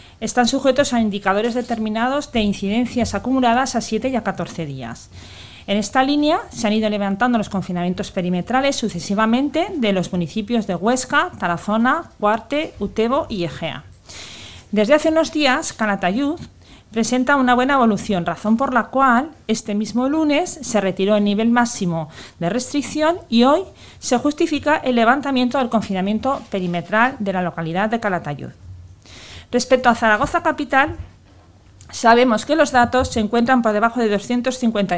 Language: Spanish